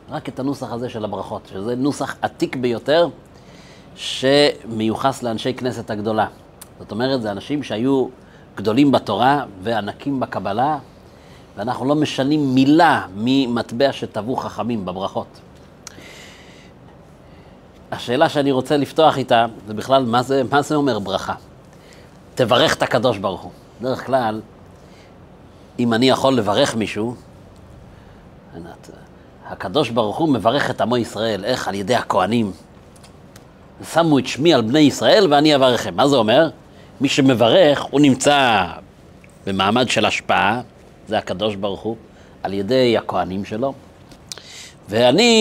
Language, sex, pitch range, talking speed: Hebrew, male, 110-145 Hz, 125 wpm